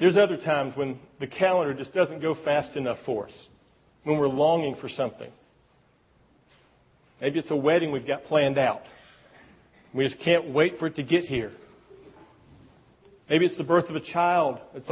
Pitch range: 145-195 Hz